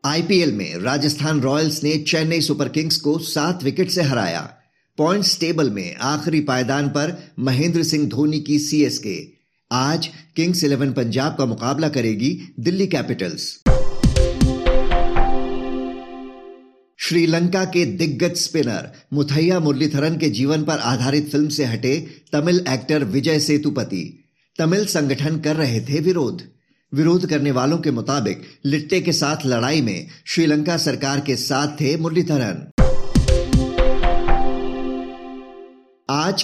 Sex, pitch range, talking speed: male, 130-160 Hz, 120 wpm